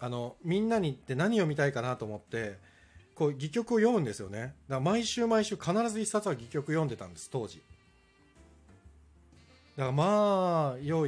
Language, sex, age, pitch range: Japanese, male, 40-59, 105-160 Hz